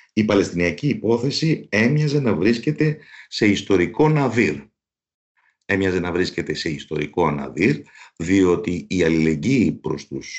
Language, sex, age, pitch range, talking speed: Greek, male, 50-69, 75-95 Hz, 115 wpm